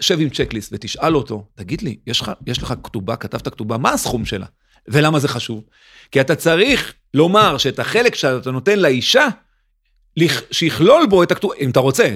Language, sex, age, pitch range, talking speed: Hebrew, male, 40-59, 130-195 Hz, 180 wpm